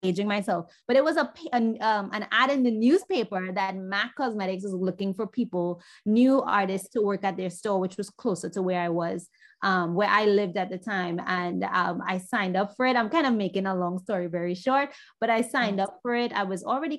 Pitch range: 185-235 Hz